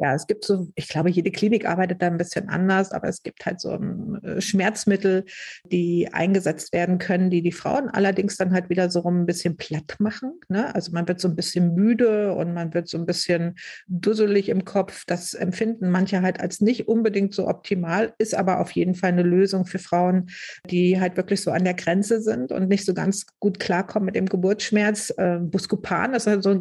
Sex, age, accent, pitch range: female, 50-69, German, 180-205 Hz